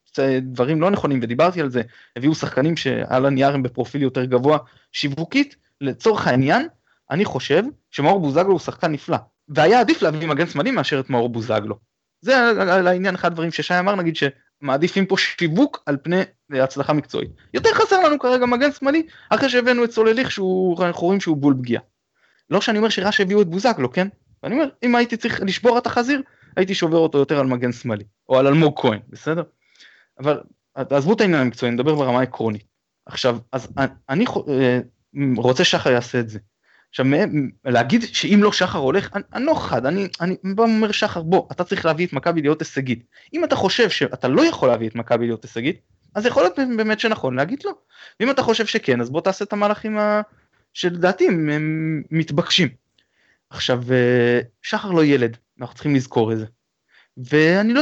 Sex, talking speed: male, 130 wpm